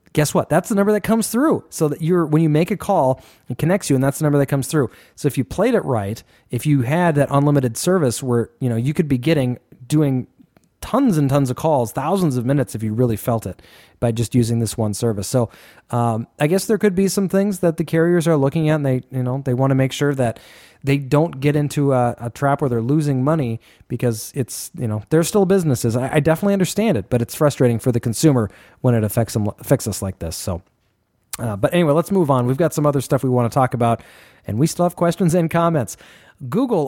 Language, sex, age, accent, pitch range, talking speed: English, male, 30-49, American, 125-165 Hz, 245 wpm